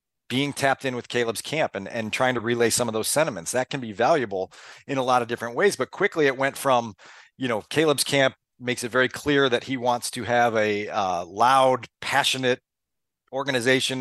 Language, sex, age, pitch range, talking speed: English, male, 40-59, 125-150 Hz, 205 wpm